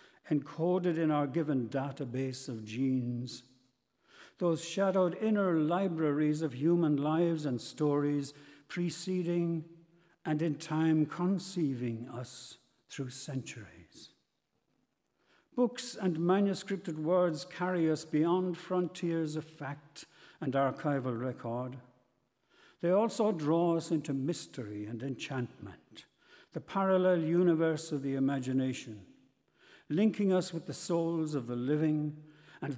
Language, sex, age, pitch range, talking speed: English, male, 60-79, 135-170 Hz, 110 wpm